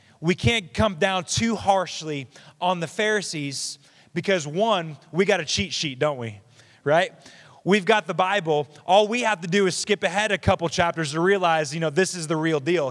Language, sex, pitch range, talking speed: English, male, 130-170 Hz, 200 wpm